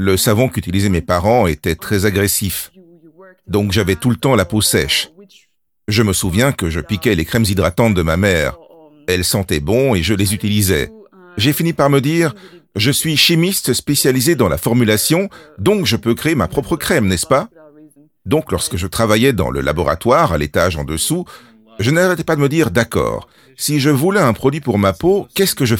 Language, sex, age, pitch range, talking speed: French, male, 40-59, 100-150 Hz, 200 wpm